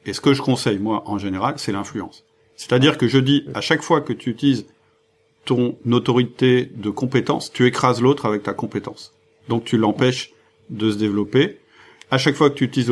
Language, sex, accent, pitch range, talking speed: French, male, French, 110-140 Hz, 195 wpm